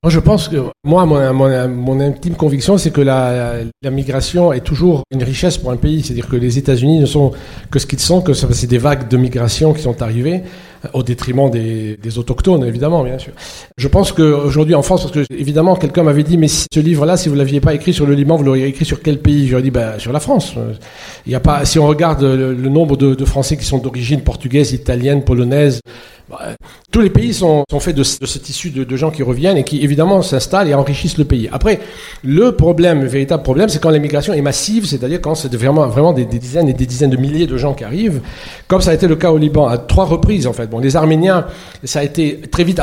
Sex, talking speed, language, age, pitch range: male, 245 wpm, French, 40-59, 130-165 Hz